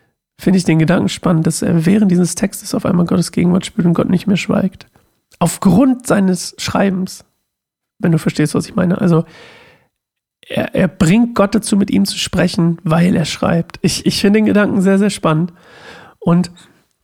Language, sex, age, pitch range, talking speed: German, male, 40-59, 175-205 Hz, 180 wpm